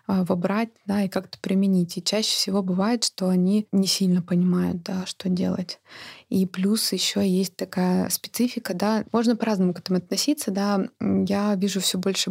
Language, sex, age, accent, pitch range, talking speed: Russian, female, 20-39, native, 180-210 Hz, 165 wpm